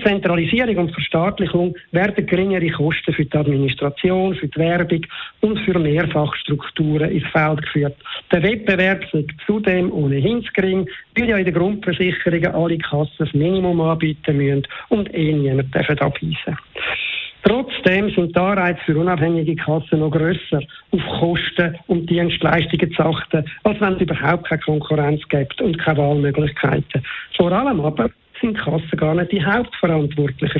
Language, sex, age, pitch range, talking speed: German, male, 50-69, 155-185 Hz, 145 wpm